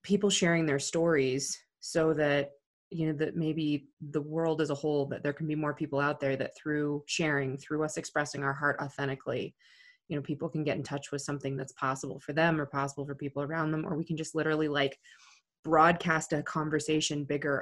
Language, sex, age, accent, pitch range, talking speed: English, female, 20-39, American, 145-185 Hz, 210 wpm